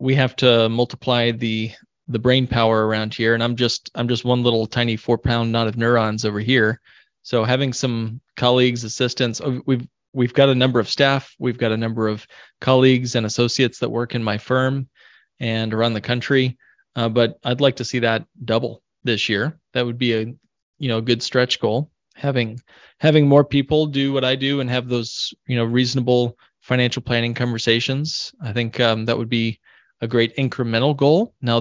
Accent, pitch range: American, 115-130 Hz